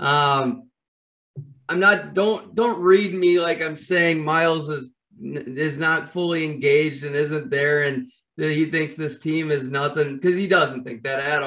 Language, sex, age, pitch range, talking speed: English, male, 30-49, 145-180 Hz, 175 wpm